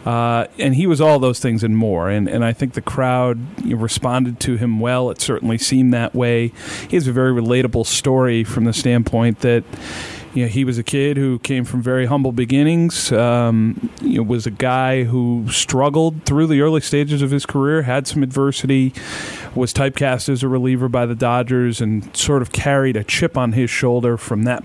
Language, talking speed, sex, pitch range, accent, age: English, 205 wpm, male, 115-135 Hz, American, 40-59